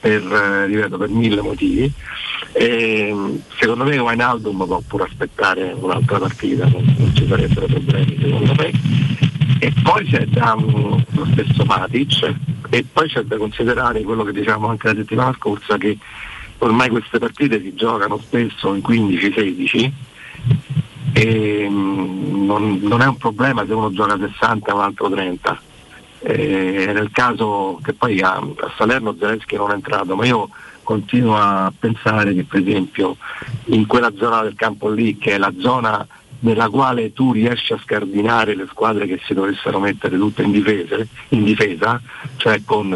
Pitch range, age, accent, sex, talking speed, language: 105-135 Hz, 50-69, native, male, 155 wpm, Italian